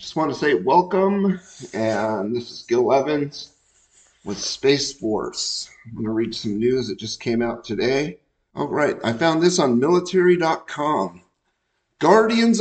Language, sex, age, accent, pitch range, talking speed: English, male, 50-69, American, 115-165 Hz, 150 wpm